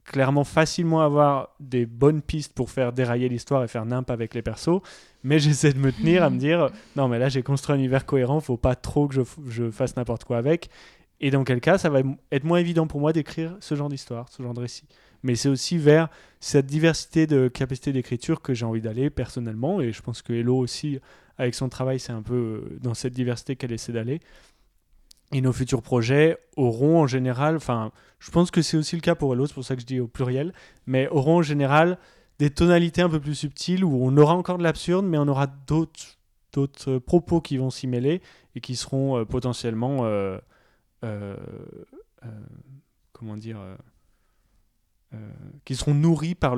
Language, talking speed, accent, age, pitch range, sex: French, 210 wpm, French, 20-39, 125-150 Hz, male